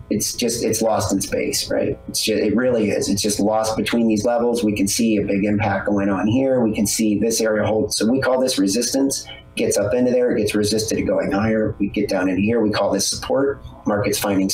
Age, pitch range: 30-49, 100-125 Hz